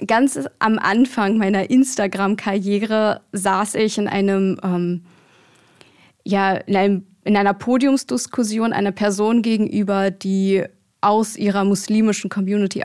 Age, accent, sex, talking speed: 20-39, German, female, 110 wpm